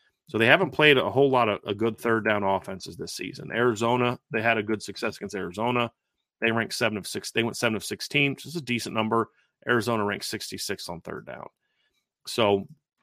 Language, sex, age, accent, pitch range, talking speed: English, male, 30-49, American, 105-125 Hz, 210 wpm